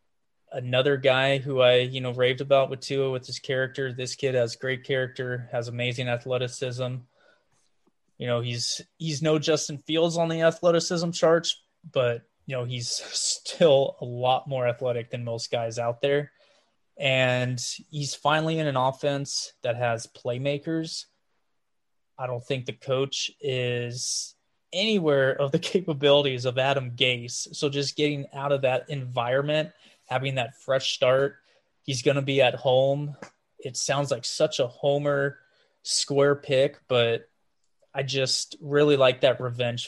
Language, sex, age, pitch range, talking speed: English, male, 20-39, 125-145 Hz, 150 wpm